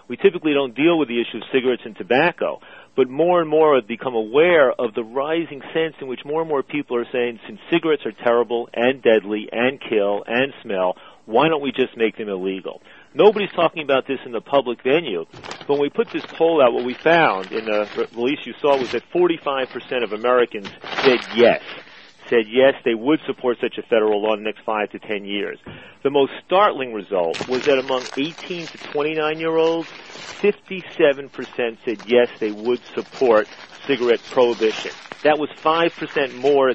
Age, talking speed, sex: 40-59, 190 wpm, male